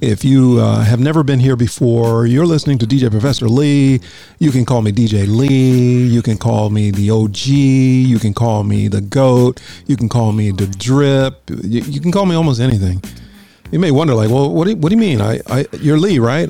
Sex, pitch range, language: male, 115-150 Hz, English